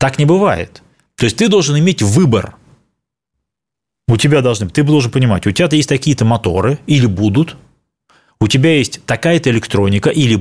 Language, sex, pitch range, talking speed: Russian, male, 120-175 Hz, 160 wpm